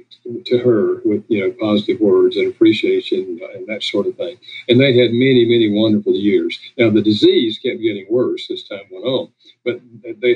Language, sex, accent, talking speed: English, male, American, 205 wpm